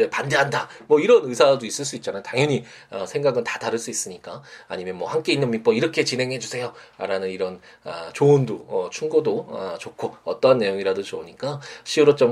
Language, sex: Korean, male